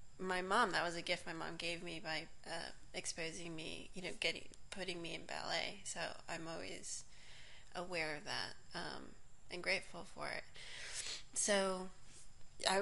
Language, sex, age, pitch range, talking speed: English, female, 30-49, 165-190 Hz, 160 wpm